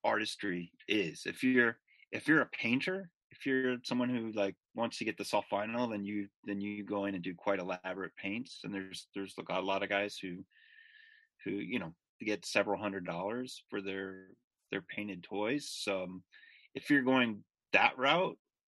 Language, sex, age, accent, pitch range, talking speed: English, male, 30-49, American, 95-125 Hz, 185 wpm